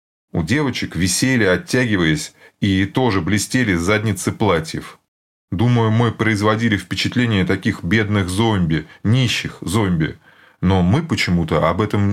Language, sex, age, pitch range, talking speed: Russian, male, 30-49, 95-115 Hz, 115 wpm